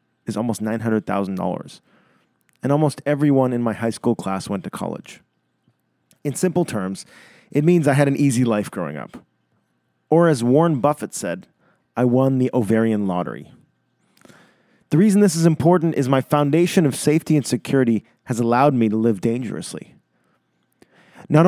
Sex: male